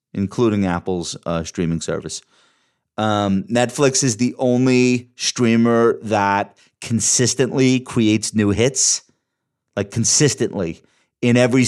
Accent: American